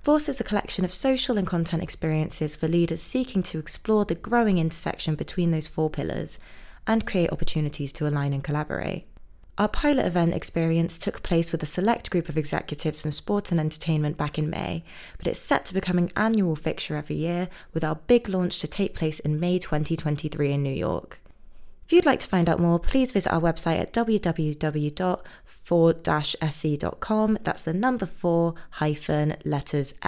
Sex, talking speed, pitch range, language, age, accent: female, 180 wpm, 155-195 Hz, English, 20-39, British